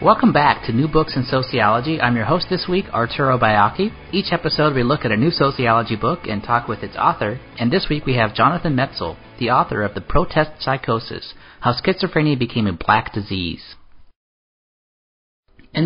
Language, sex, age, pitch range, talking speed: English, male, 40-59, 105-155 Hz, 180 wpm